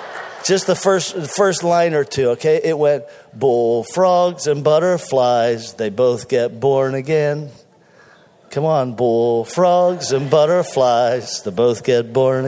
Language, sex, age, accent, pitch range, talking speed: English, male, 50-69, American, 135-160 Hz, 135 wpm